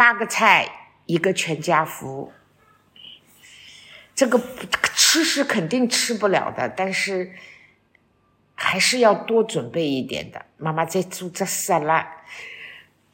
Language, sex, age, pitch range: Chinese, female, 50-69, 155-195 Hz